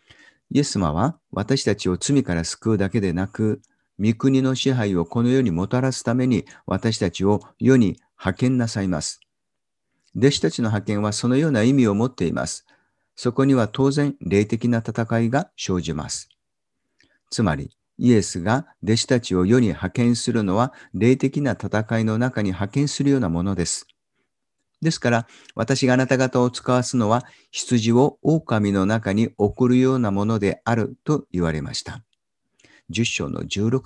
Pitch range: 100-130 Hz